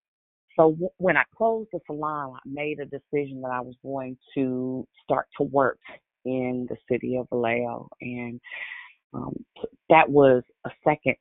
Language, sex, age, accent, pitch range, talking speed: English, female, 40-59, American, 125-155 Hz, 155 wpm